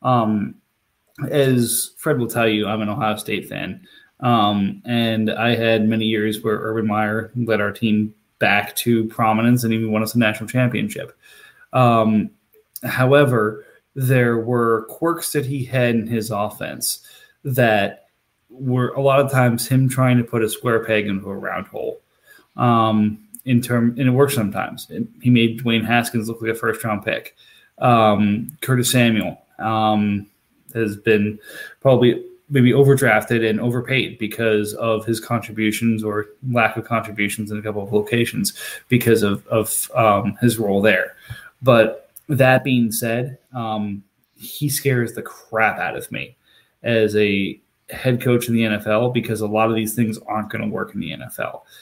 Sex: male